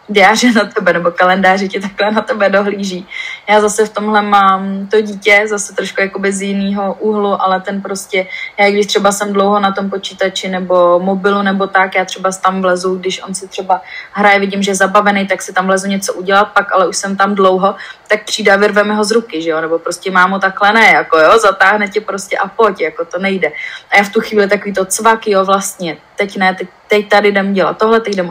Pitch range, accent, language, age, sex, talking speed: 190-210 Hz, native, Czech, 20-39, female, 230 wpm